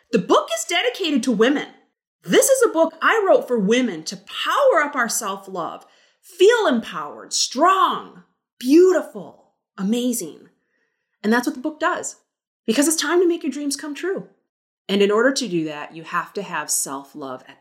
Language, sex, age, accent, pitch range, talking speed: English, female, 30-49, American, 190-285 Hz, 175 wpm